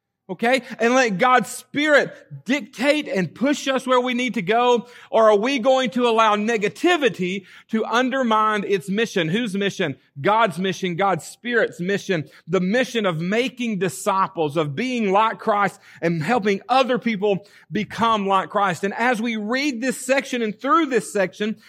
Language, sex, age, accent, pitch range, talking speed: English, male, 40-59, American, 180-245 Hz, 160 wpm